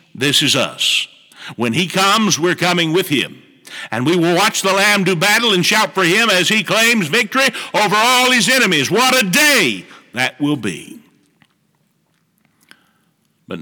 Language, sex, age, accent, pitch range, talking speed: English, male, 60-79, American, 120-180 Hz, 165 wpm